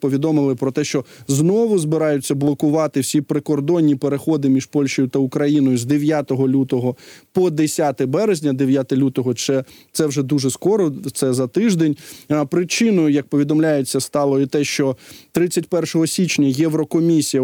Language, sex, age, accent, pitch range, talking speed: Ukrainian, male, 20-39, native, 135-160 Hz, 135 wpm